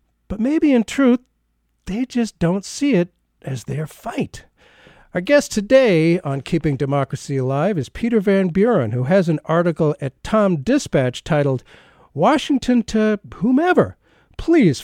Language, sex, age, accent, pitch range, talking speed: English, male, 50-69, American, 130-190 Hz, 140 wpm